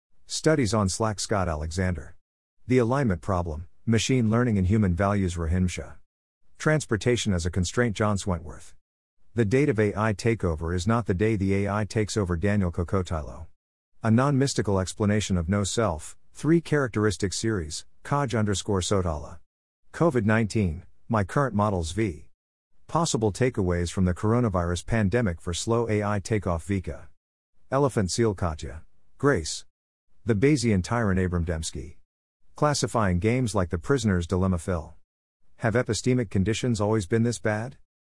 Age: 50-69